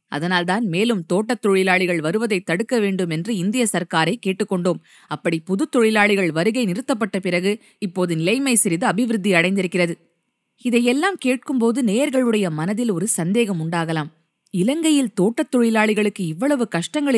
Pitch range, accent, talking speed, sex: 180-240 Hz, native, 120 wpm, female